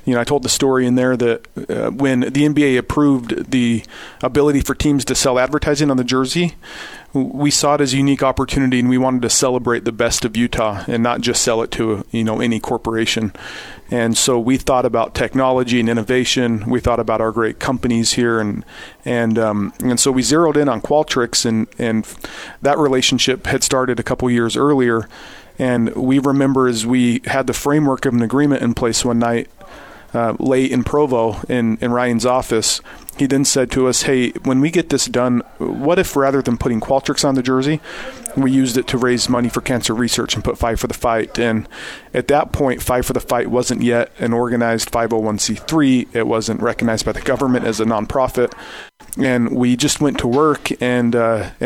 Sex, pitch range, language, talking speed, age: male, 120-135 Hz, English, 200 wpm, 40-59